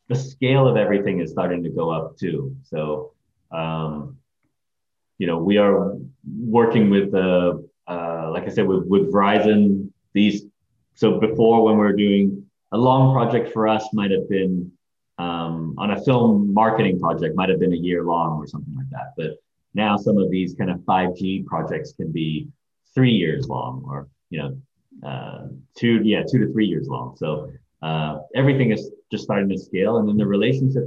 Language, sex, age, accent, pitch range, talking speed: English, male, 30-49, American, 85-110 Hz, 175 wpm